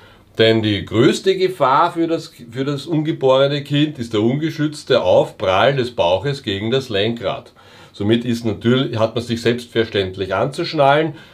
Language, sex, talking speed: German, male, 125 wpm